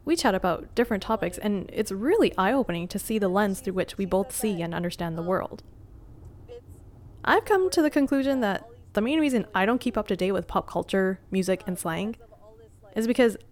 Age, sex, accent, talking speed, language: 20-39, female, American, 200 wpm, English